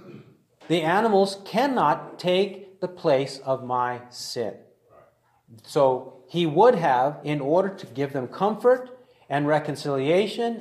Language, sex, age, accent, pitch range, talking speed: English, male, 50-69, American, 130-175 Hz, 120 wpm